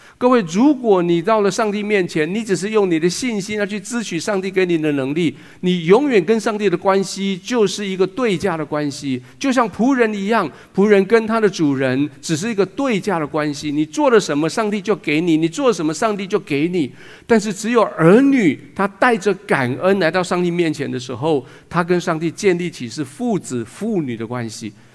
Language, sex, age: Chinese, male, 50-69